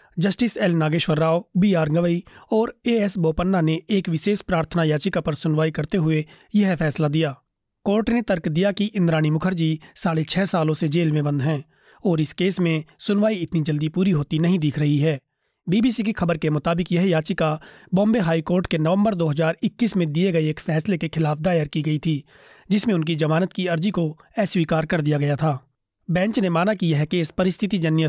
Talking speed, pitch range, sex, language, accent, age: 195 wpm, 155-185 Hz, male, Hindi, native, 30-49